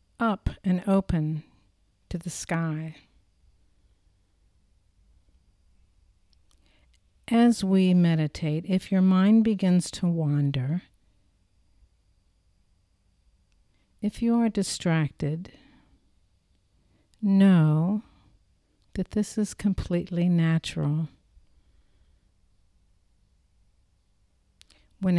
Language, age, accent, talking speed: English, 60-79, American, 60 wpm